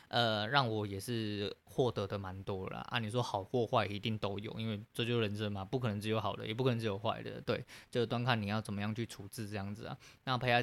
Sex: male